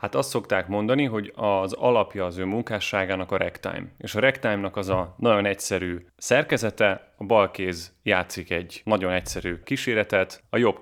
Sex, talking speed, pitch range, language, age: male, 160 wpm, 95-115 Hz, Hungarian, 30-49